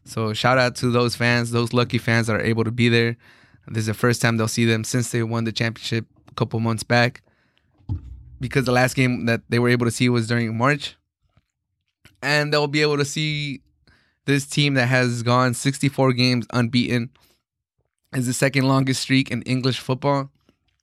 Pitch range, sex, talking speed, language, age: 115-135 Hz, male, 195 wpm, English, 20-39